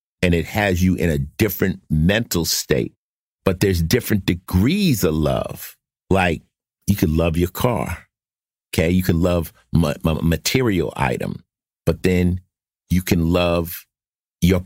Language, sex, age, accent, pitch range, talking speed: English, male, 50-69, American, 85-110 Hz, 140 wpm